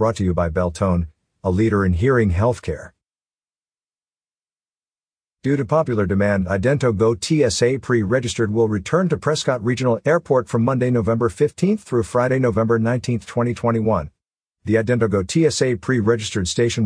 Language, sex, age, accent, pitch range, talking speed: English, male, 50-69, American, 100-125 Hz, 130 wpm